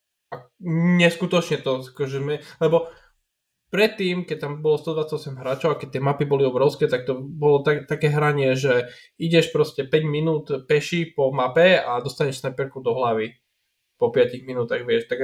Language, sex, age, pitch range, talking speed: Slovak, male, 20-39, 130-160 Hz, 160 wpm